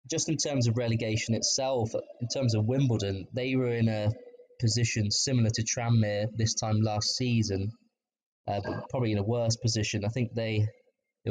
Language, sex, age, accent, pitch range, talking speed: English, male, 20-39, British, 110-120 Hz, 175 wpm